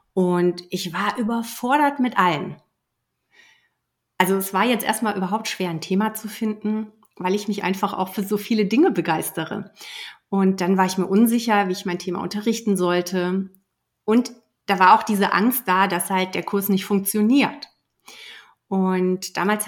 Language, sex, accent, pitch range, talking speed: German, female, German, 185-225 Hz, 165 wpm